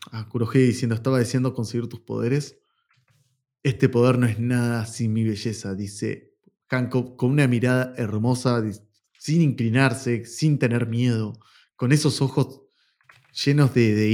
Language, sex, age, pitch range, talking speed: Spanish, male, 20-39, 110-130 Hz, 140 wpm